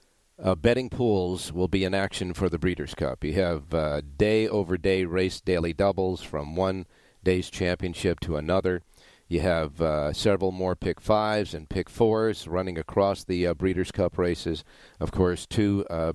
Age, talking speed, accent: 50-69, 165 wpm, American